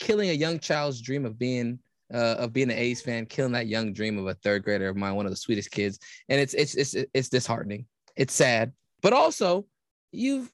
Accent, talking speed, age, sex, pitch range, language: American, 220 wpm, 20-39, male, 130-210 Hz, English